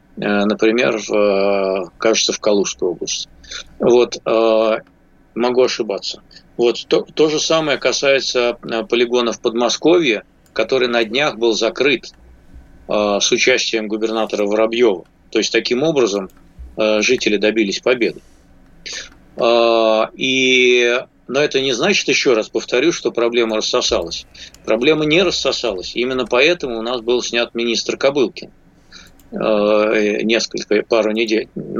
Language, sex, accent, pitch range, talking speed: Russian, male, native, 105-120 Hz, 110 wpm